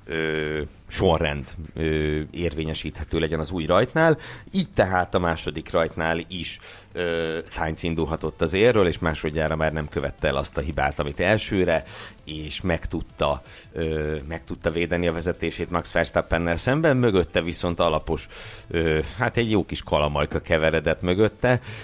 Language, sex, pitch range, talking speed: Hungarian, male, 80-90 Hz, 145 wpm